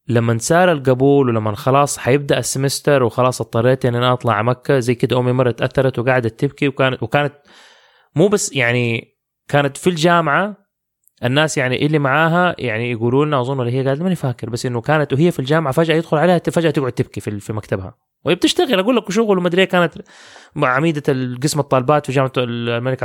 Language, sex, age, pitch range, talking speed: English, male, 20-39, 120-155 Hz, 170 wpm